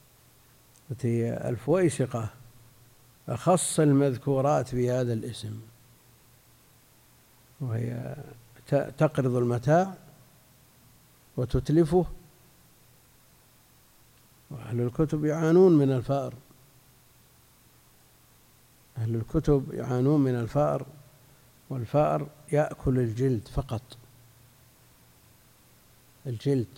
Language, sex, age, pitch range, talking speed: Arabic, male, 60-79, 115-135 Hz, 60 wpm